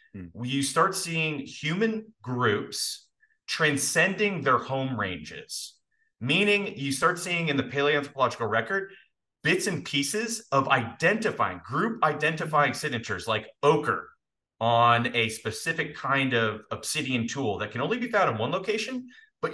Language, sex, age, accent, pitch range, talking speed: English, male, 30-49, American, 115-165 Hz, 130 wpm